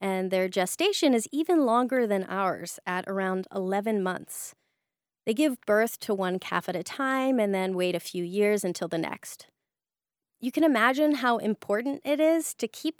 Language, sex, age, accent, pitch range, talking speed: English, female, 20-39, American, 190-260 Hz, 180 wpm